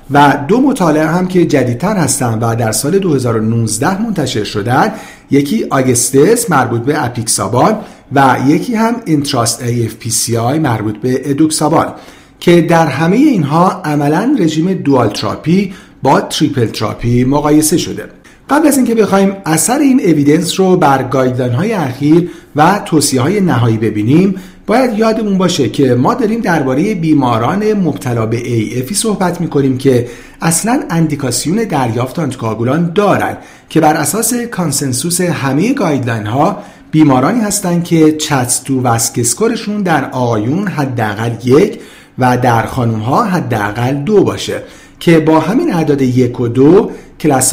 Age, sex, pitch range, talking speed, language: 50-69, male, 125-180 Hz, 130 wpm, Persian